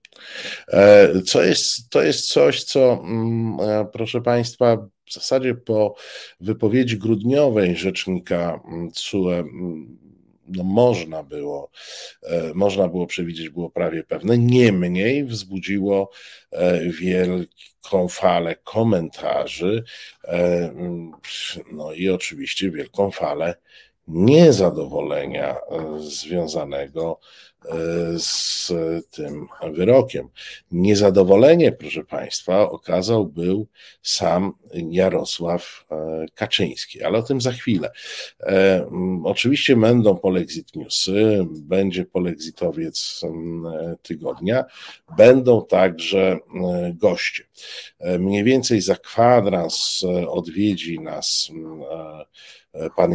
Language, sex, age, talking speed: Polish, male, 50-69, 80 wpm